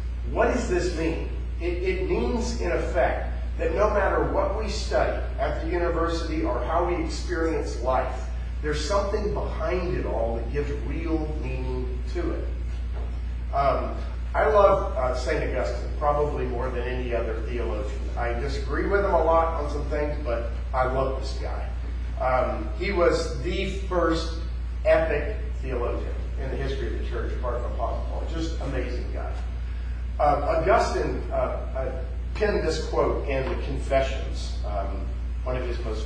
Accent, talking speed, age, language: American, 160 wpm, 40-59, English